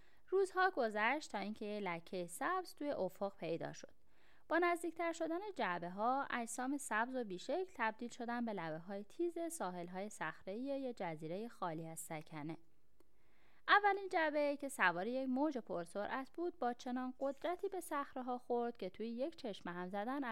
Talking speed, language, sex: 165 wpm, Persian, female